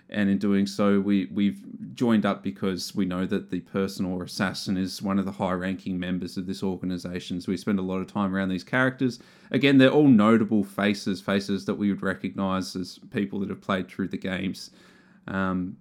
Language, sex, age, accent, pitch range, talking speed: English, male, 20-39, Australian, 95-115 Hz, 210 wpm